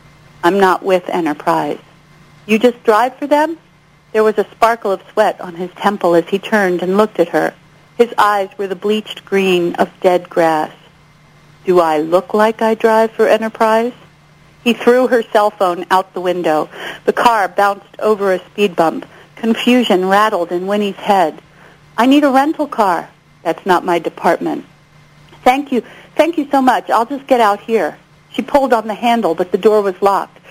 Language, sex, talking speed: English, female, 180 wpm